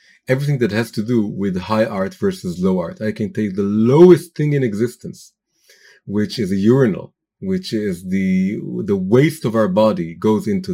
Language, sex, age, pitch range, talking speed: English, male, 40-59, 110-185 Hz, 185 wpm